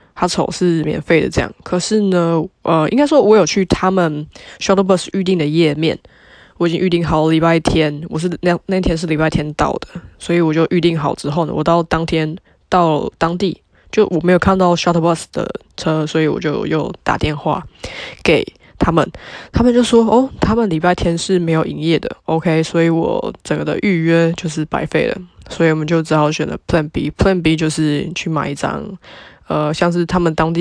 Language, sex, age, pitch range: Chinese, female, 20-39, 160-185 Hz